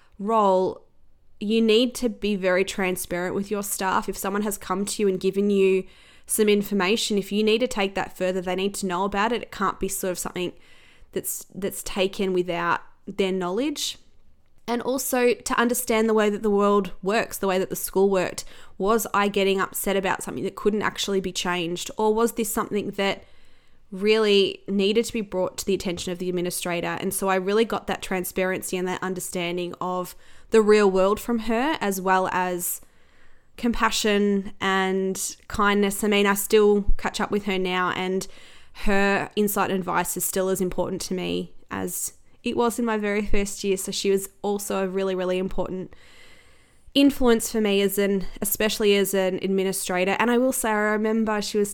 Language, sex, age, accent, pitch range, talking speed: English, female, 20-39, Australian, 185-215 Hz, 190 wpm